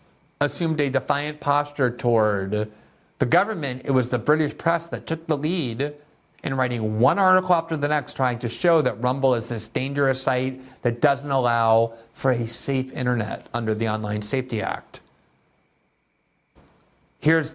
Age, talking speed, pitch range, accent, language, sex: 50-69, 155 wpm, 110-140 Hz, American, English, male